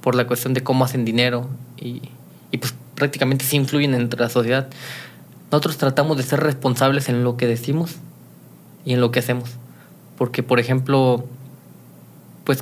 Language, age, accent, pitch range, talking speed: Spanish, 20-39, Mexican, 125-145 Hz, 160 wpm